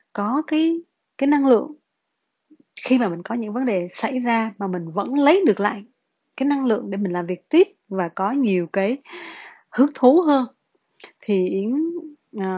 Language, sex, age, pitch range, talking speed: Vietnamese, female, 20-39, 190-260 Hz, 175 wpm